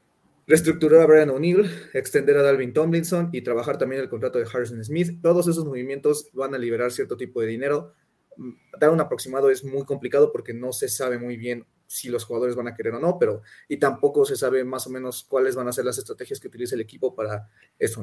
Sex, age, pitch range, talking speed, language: male, 30-49, 120-170 Hz, 220 wpm, Spanish